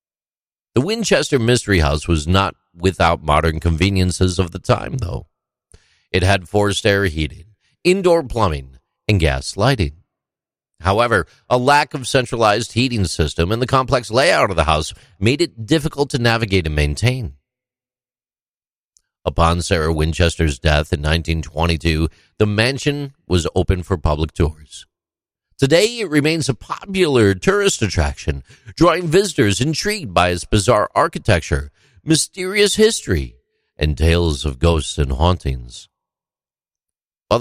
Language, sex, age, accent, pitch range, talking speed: English, male, 50-69, American, 80-120 Hz, 130 wpm